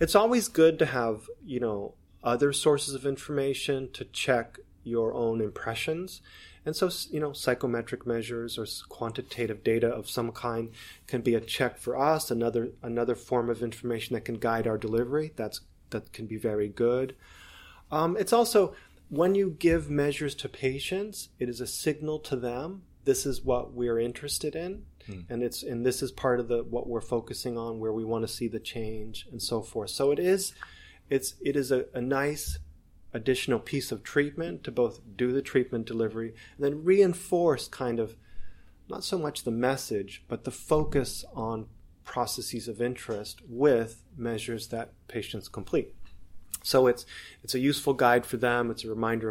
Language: Danish